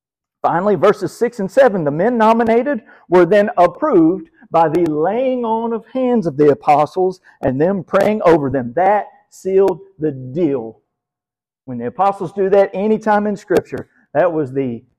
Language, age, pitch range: English, 50-69, 140-215 Hz